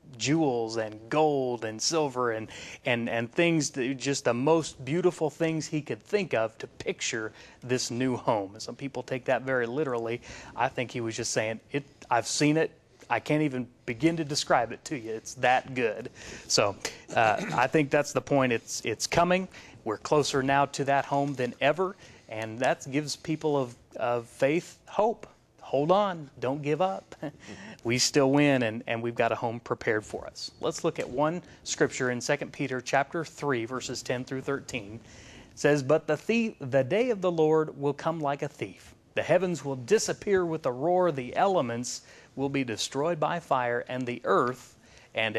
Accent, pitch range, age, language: American, 120-155 Hz, 30-49, English